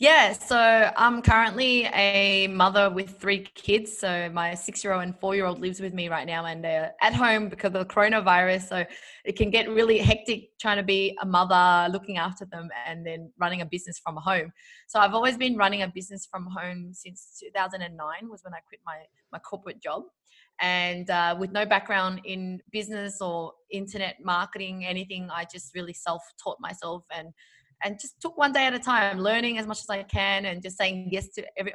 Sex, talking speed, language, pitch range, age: female, 210 wpm, English, 180-215 Hz, 20-39